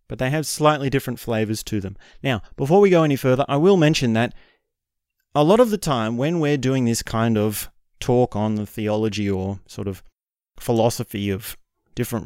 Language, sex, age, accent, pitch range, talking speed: English, male, 30-49, Australian, 110-145 Hz, 190 wpm